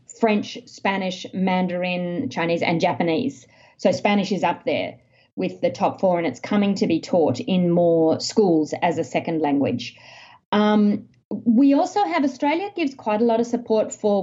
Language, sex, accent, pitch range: English, female, Australian, 180-225 Hz